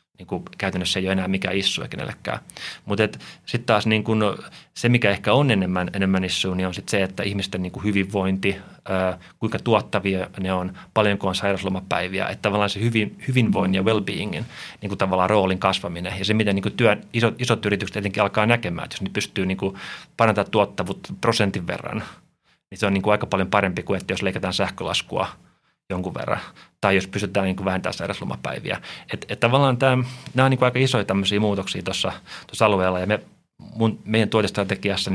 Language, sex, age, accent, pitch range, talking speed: Finnish, male, 30-49, native, 95-105 Hz, 180 wpm